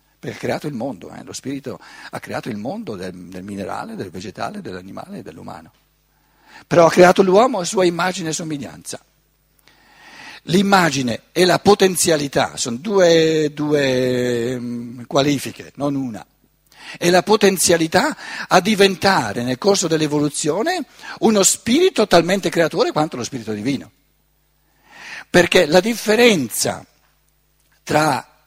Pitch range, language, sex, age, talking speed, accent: 145-190 Hz, Italian, male, 60-79, 120 wpm, native